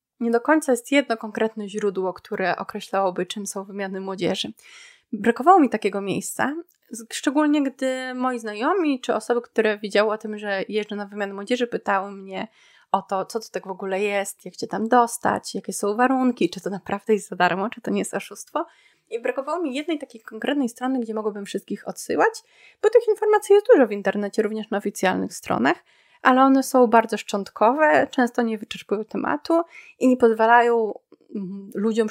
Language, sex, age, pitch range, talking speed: Polish, female, 20-39, 200-250 Hz, 180 wpm